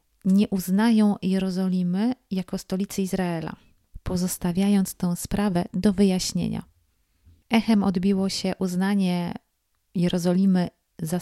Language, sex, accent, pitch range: Polish, female, native, 175-200 Hz